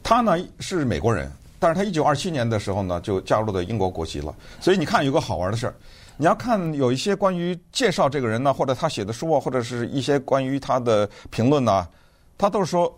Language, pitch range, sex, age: Chinese, 100-155 Hz, male, 50-69